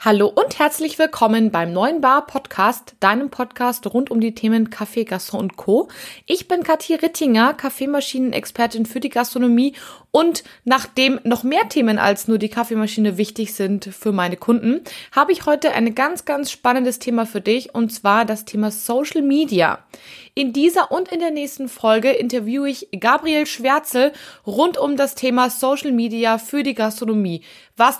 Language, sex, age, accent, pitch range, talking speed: German, female, 20-39, German, 215-285 Hz, 165 wpm